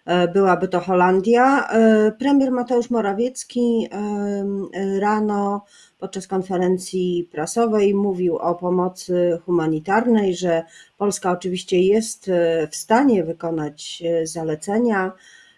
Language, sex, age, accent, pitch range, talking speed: Polish, female, 40-59, native, 170-220 Hz, 85 wpm